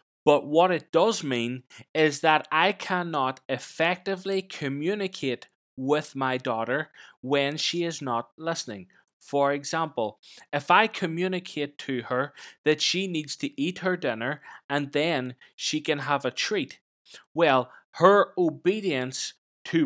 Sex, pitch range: male, 140-180 Hz